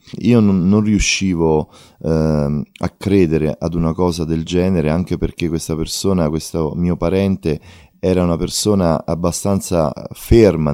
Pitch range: 80-90 Hz